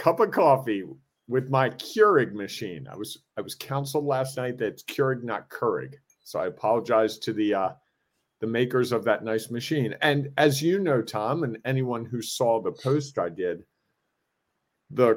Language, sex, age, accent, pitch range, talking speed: English, male, 40-59, American, 115-140 Hz, 180 wpm